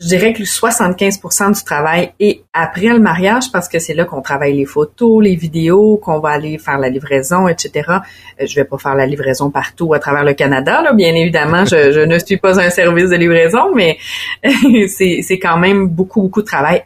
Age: 30-49